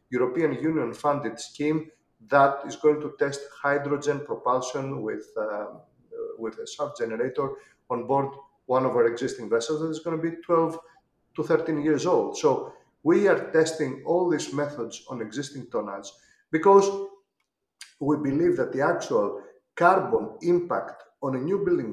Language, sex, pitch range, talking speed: English, male, 140-240 Hz, 145 wpm